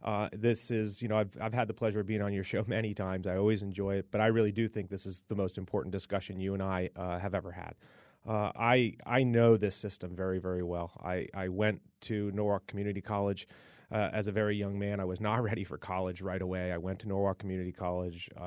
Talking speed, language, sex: 245 wpm, English, male